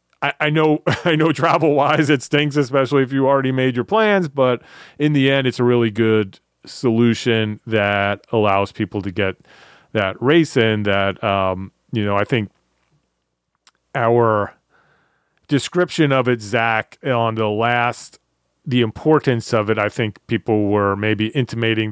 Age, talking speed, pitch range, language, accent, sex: 30-49, 155 wpm, 105-135 Hz, English, American, male